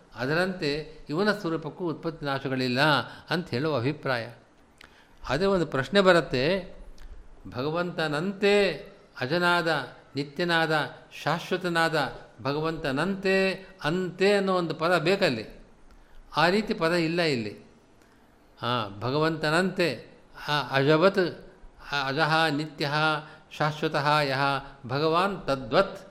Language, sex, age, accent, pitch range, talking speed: Kannada, male, 50-69, native, 140-180 Hz, 85 wpm